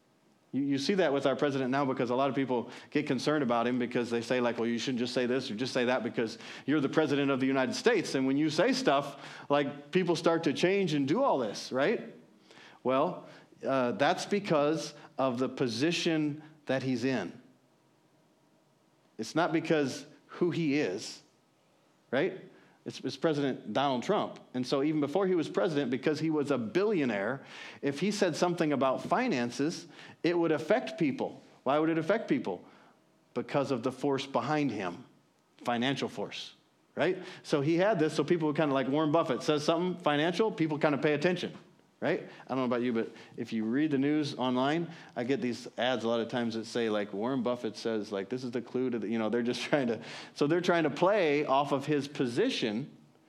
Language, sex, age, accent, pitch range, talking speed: English, male, 40-59, American, 130-160 Hz, 205 wpm